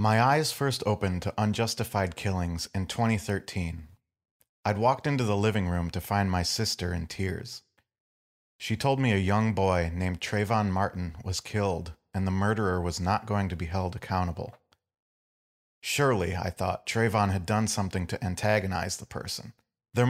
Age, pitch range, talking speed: 40-59, 90-105 Hz, 160 wpm